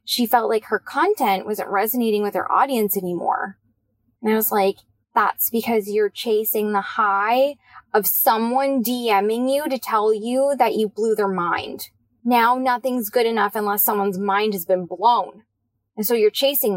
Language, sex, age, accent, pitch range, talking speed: English, female, 10-29, American, 195-255 Hz, 170 wpm